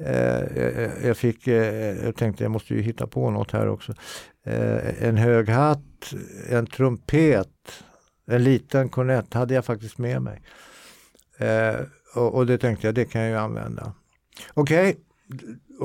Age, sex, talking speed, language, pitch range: 60-79, male, 135 wpm, Swedish, 105-135 Hz